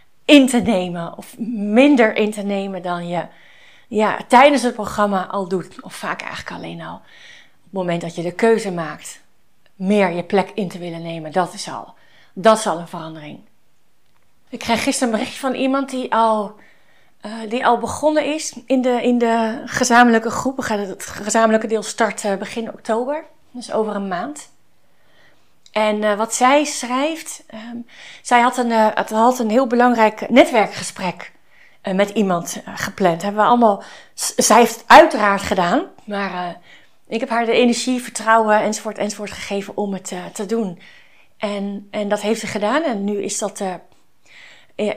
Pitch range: 200-245 Hz